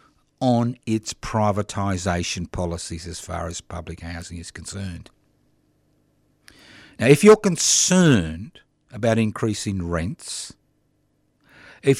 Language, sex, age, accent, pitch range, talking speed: English, male, 50-69, Australian, 90-125 Hz, 95 wpm